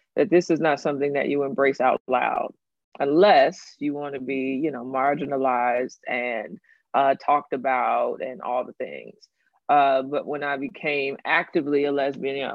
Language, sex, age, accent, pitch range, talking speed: English, female, 20-39, American, 140-165 Hz, 160 wpm